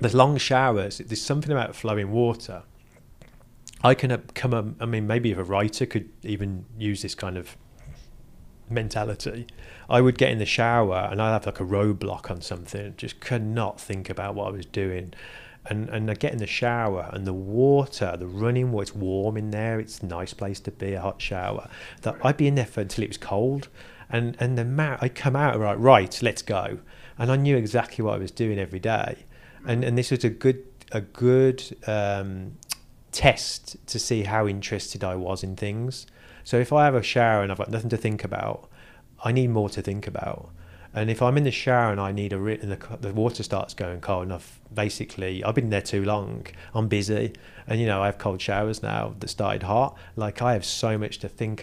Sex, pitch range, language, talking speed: male, 100-120 Hz, English, 220 wpm